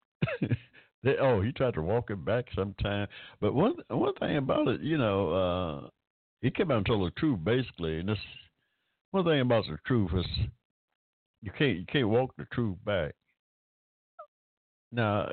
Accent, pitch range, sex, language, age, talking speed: American, 90-130 Hz, male, English, 60-79, 170 wpm